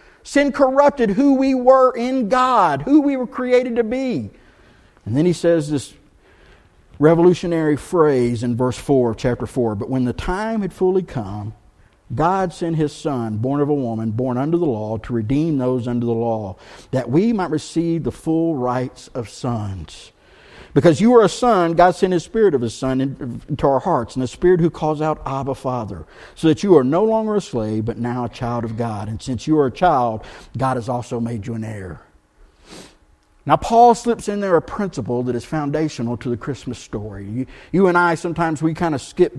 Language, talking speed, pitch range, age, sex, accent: English, 205 wpm, 120-180 Hz, 50-69, male, American